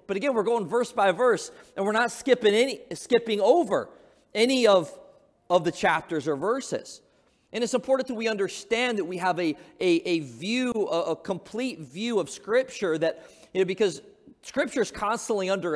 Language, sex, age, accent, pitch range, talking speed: English, male, 40-59, American, 160-220 Hz, 185 wpm